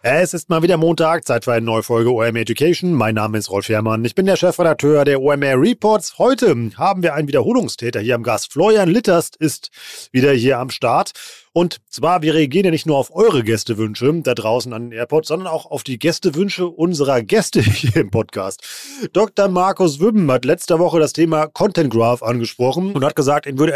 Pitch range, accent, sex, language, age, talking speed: 130-175 Hz, German, male, German, 30-49, 200 wpm